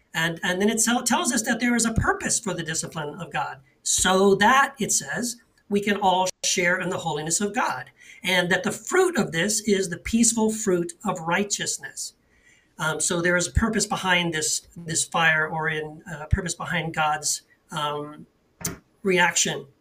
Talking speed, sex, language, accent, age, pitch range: 180 wpm, male, English, American, 40-59, 170-215 Hz